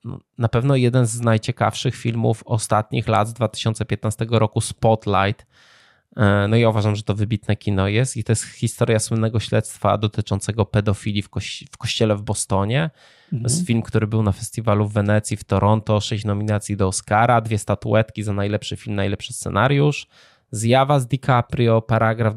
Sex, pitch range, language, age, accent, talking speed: male, 105-125 Hz, Polish, 20-39, native, 160 wpm